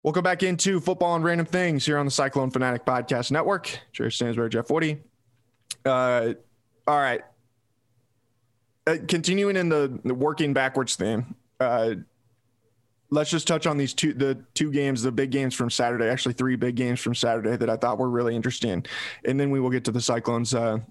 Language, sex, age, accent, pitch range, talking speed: English, male, 20-39, American, 120-145 Hz, 185 wpm